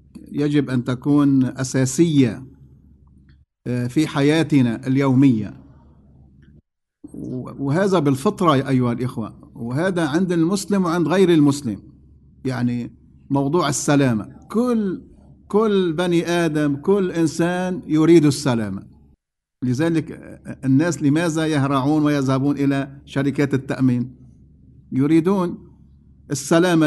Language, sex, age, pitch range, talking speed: English, male, 50-69, 125-170 Hz, 85 wpm